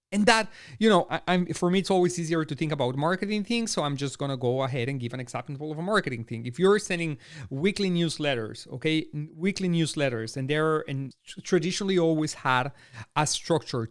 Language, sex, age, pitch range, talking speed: English, male, 40-59, 140-175 Hz, 190 wpm